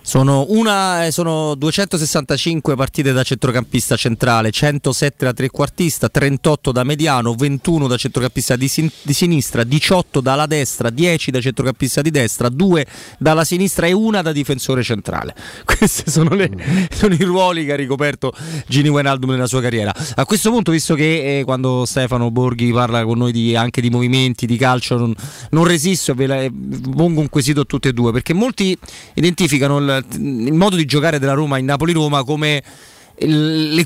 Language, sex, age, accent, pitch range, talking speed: Italian, male, 30-49, native, 125-160 Hz, 165 wpm